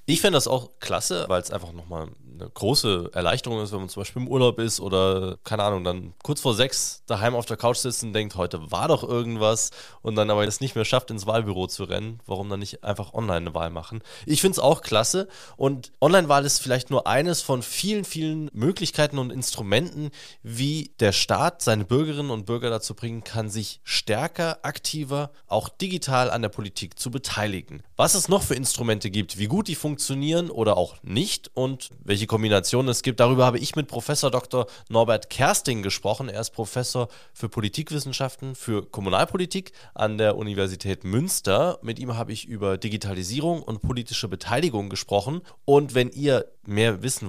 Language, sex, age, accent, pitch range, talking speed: German, male, 20-39, German, 105-140 Hz, 190 wpm